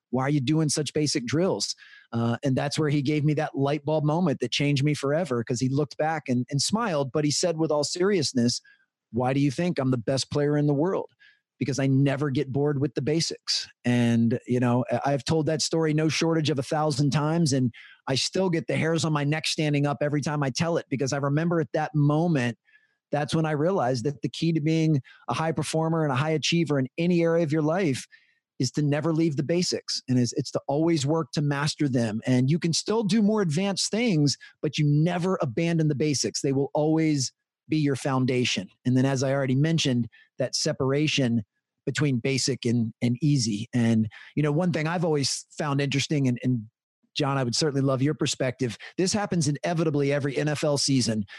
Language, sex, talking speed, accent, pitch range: English, male, 215 wpm, American, 135-160 Hz